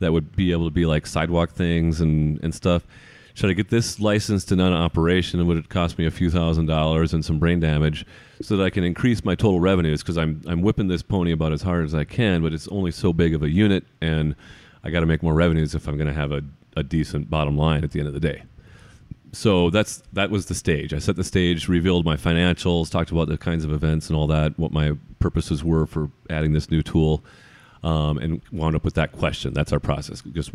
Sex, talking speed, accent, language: male, 245 wpm, American, English